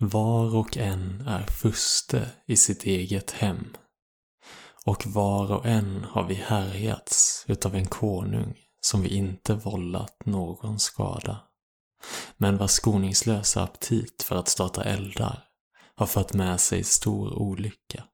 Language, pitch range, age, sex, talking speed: Swedish, 95-110 Hz, 20-39, male, 130 wpm